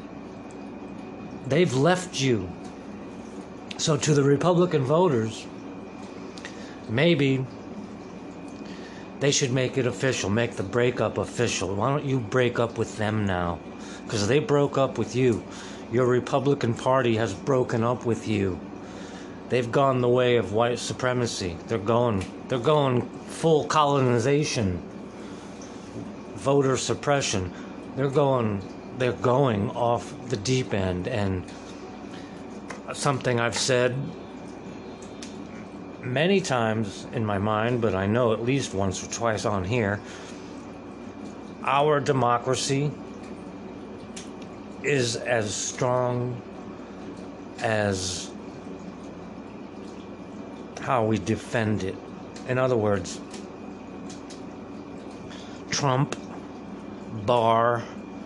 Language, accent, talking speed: English, American, 100 wpm